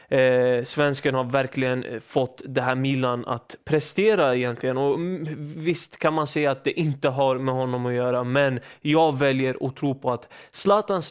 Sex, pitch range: male, 130-165 Hz